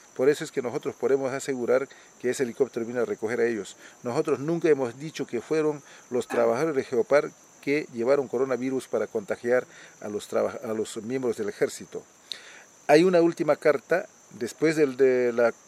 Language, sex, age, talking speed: Spanish, male, 40-59, 175 wpm